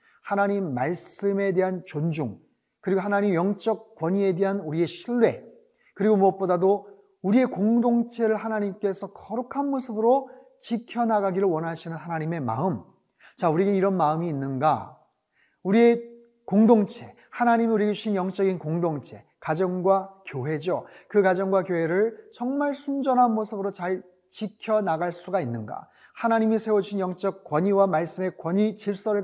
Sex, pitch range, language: male, 175-220 Hz, Korean